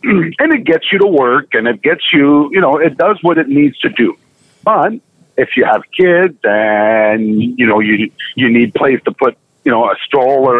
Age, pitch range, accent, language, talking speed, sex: 50-69, 115-175 Hz, American, English, 210 wpm, male